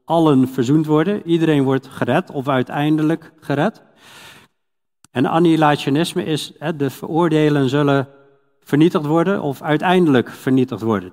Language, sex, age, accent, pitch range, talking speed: Dutch, male, 50-69, Dutch, 130-170 Hz, 115 wpm